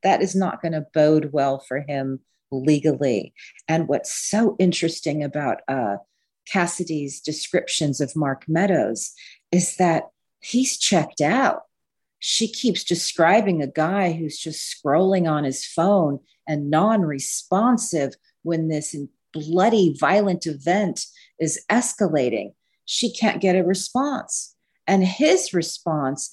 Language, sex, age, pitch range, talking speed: English, female, 40-59, 150-195 Hz, 120 wpm